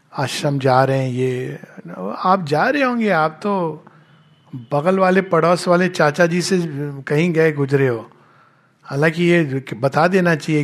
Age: 60-79